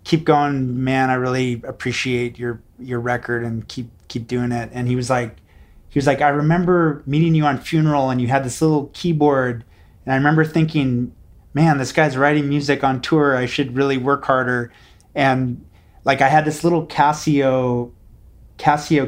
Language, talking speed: English, 180 wpm